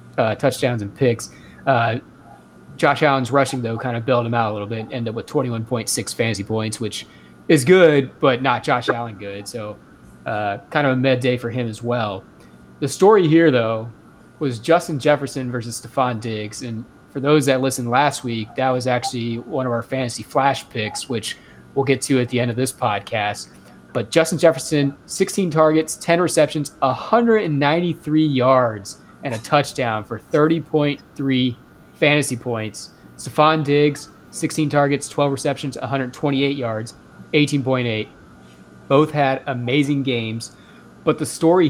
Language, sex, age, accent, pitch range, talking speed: English, male, 30-49, American, 115-145 Hz, 160 wpm